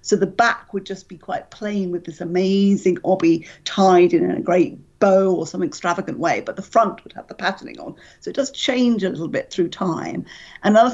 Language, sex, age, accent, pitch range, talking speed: English, female, 50-69, British, 180-225 Hz, 215 wpm